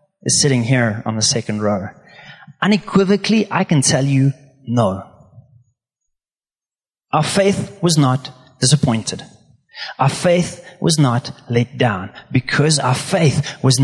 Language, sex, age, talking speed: English, male, 30-49, 120 wpm